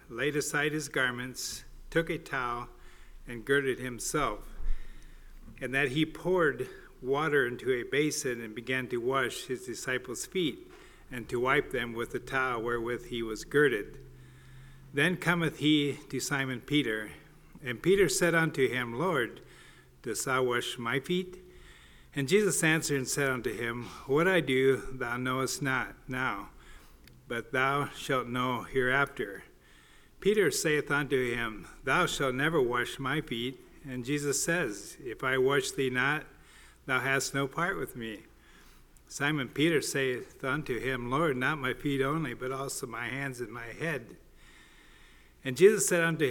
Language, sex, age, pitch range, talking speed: English, male, 50-69, 125-150 Hz, 150 wpm